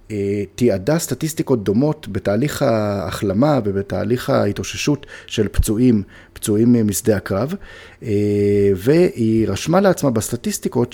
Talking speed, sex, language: 90 wpm, male, Hebrew